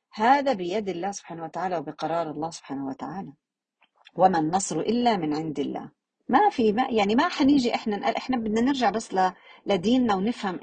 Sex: female